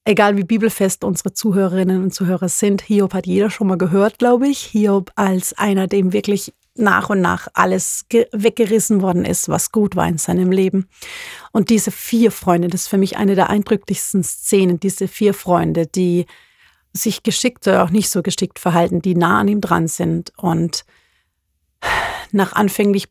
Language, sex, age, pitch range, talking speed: German, female, 40-59, 185-215 Hz, 175 wpm